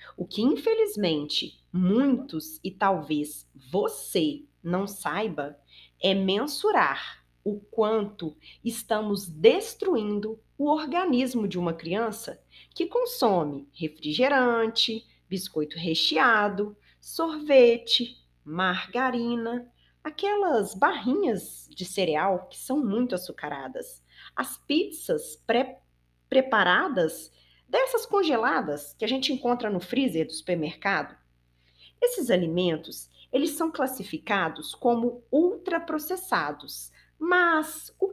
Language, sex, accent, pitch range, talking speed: Portuguese, female, Brazilian, 155-260 Hz, 90 wpm